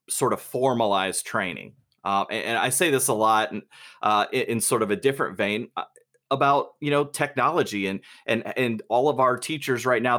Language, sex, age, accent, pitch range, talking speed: English, male, 30-49, American, 110-135 Hz, 190 wpm